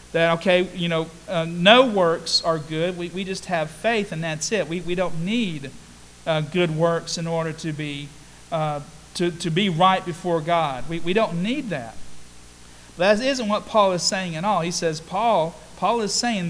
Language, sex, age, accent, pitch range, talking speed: English, male, 40-59, American, 155-200 Hz, 200 wpm